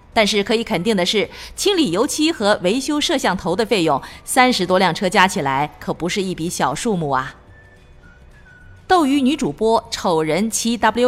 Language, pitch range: Chinese, 170-245 Hz